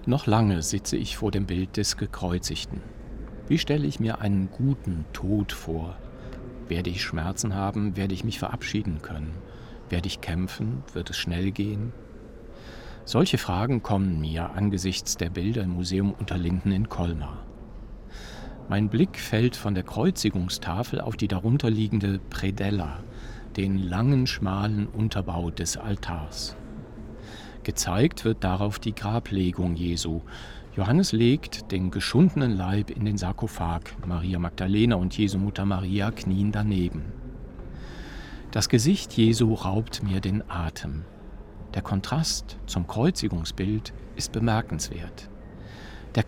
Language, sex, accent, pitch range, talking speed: German, male, German, 95-115 Hz, 125 wpm